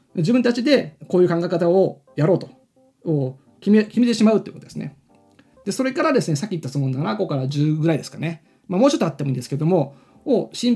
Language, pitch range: Japanese, 135-220 Hz